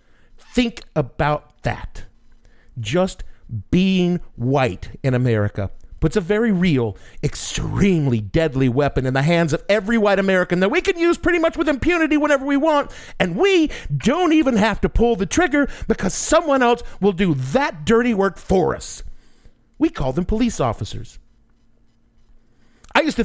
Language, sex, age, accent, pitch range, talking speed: English, male, 50-69, American, 140-225 Hz, 150 wpm